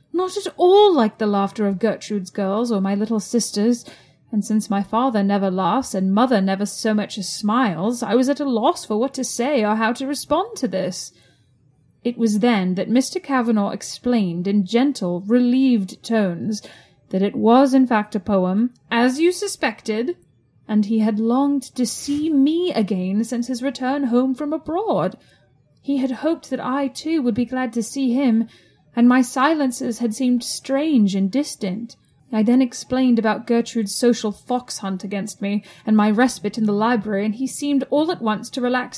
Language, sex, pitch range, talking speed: English, female, 205-265 Hz, 185 wpm